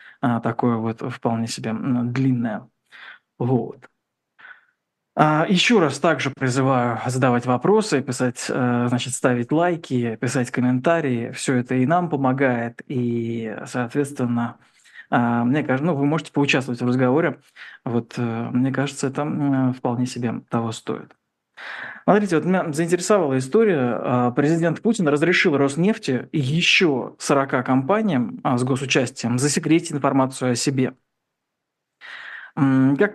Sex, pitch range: male, 125-165 Hz